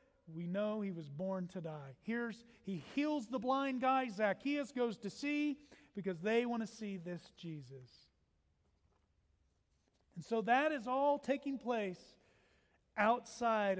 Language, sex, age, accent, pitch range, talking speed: English, male, 40-59, American, 165-210 Hz, 135 wpm